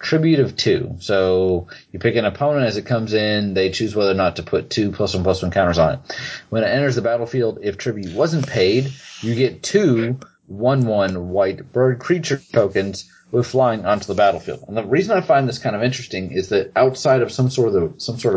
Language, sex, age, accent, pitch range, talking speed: English, male, 30-49, American, 95-130 Hz, 220 wpm